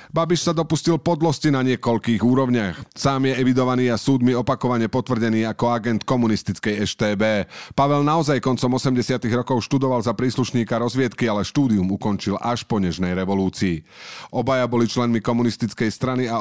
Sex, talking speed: male, 145 wpm